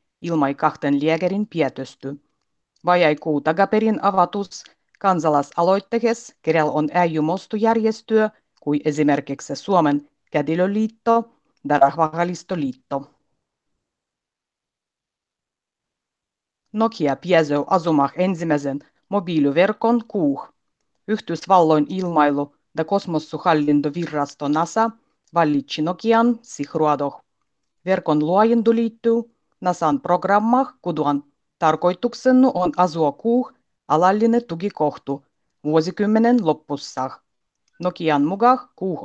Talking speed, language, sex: 75 wpm, Finnish, female